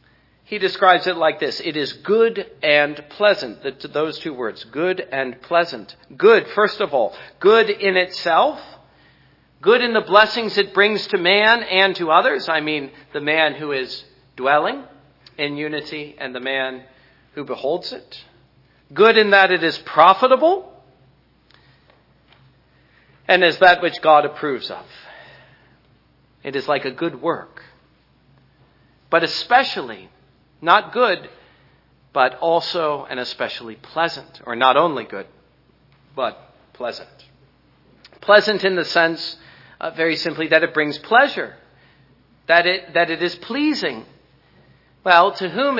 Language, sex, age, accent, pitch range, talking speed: English, male, 50-69, American, 145-210 Hz, 140 wpm